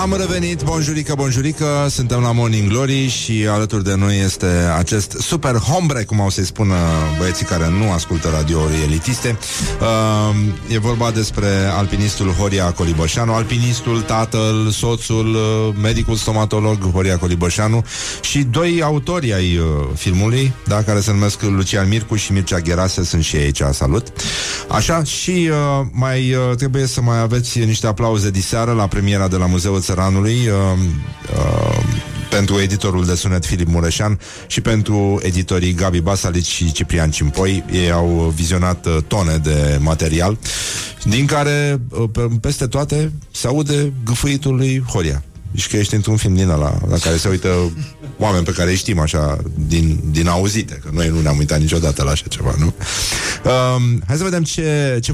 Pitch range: 90-120 Hz